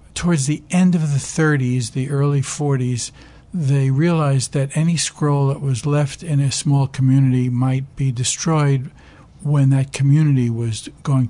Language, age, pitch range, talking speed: English, 60-79, 125-145 Hz, 155 wpm